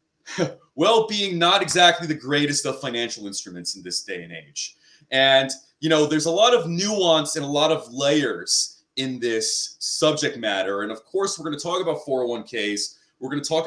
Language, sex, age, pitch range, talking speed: English, male, 30-49, 125-165 Hz, 190 wpm